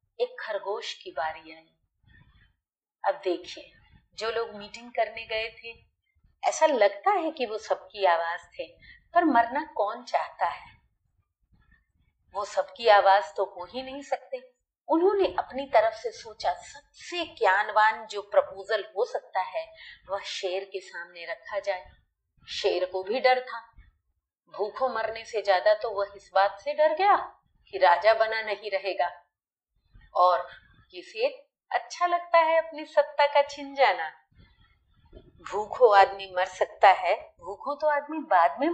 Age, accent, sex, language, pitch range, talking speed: 40-59, native, female, Hindi, 195-320 Hz, 145 wpm